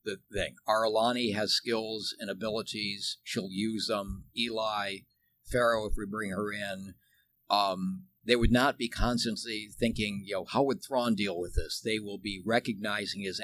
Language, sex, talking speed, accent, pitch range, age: English, male, 165 wpm, American, 95-120 Hz, 50-69